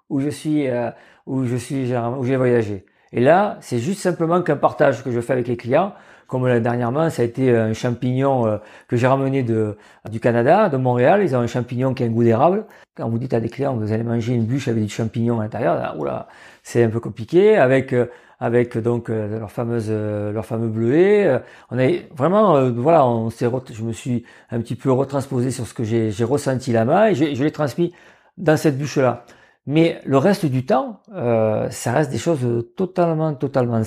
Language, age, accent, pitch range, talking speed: French, 50-69, French, 120-160 Hz, 220 wpm